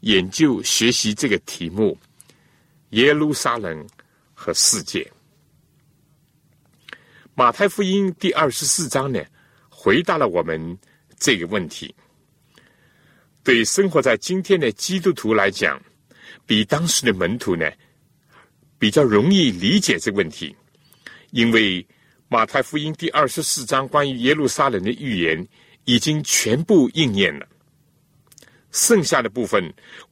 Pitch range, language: 120-160 Hz, Chinese